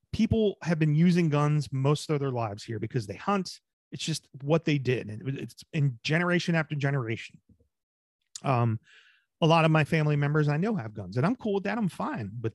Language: English